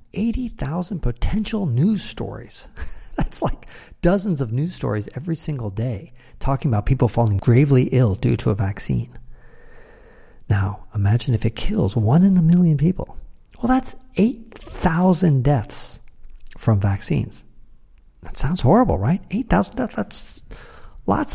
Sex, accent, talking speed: male, American, 130 wpm